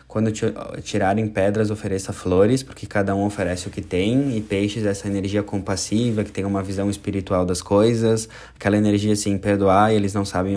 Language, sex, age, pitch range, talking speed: Portuguese, male, 20-39, 95-110 Hz, 185 wpm